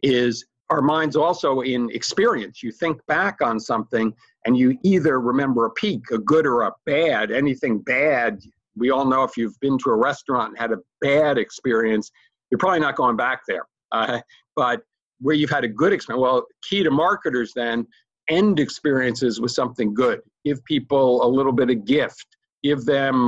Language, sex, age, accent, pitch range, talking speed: English, male, 50-69, American, 115-150 Hz, 185 wpm